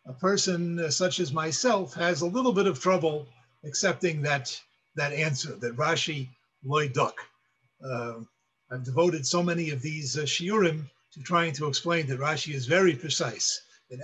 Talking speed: 165 wpm